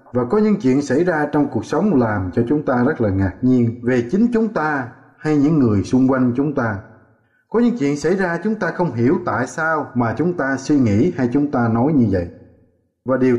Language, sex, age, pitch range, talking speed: Vietnamese, male, 20-39, 120-175 Hz, 235 wpm